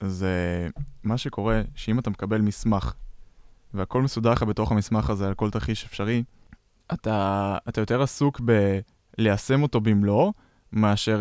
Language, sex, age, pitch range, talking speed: Hebrew, male, 20-39, 100-120 Hz, 135 wpm